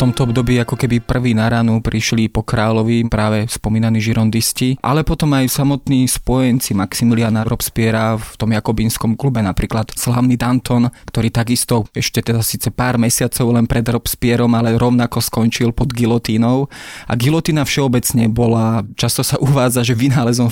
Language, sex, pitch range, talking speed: Slovak, male, 115-125 Hz, 150 wpm